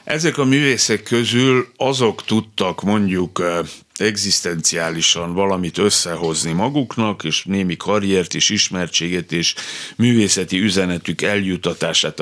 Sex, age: male, 60-79